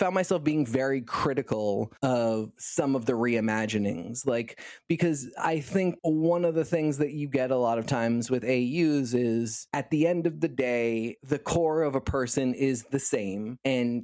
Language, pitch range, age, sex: English, 120-150 Hz, 20-39, male